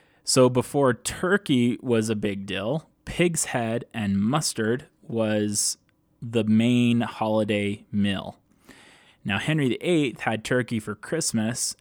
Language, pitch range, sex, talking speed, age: English, 105-125 Hz, male, 115 wpm, 20-39